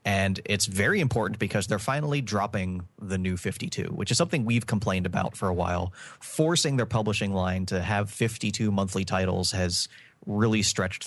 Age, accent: 30-49, American